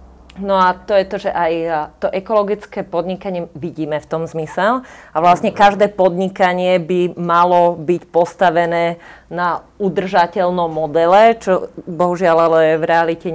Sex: female